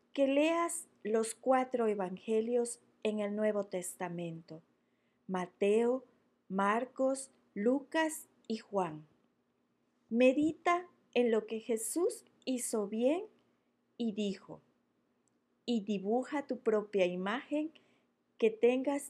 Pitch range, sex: 200-260 Hz, female